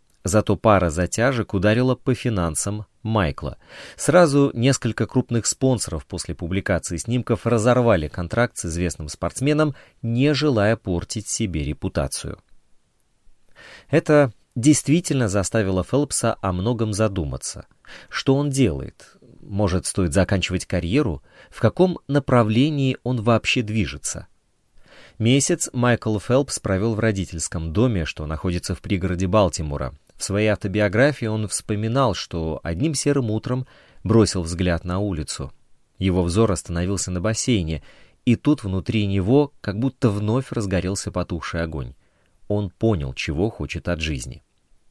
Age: 30-49